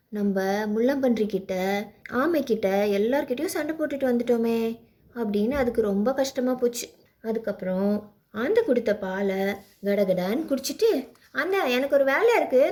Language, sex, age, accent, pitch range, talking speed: Tamil, female, 20-39, native, 205-275 Hz, 115 wpm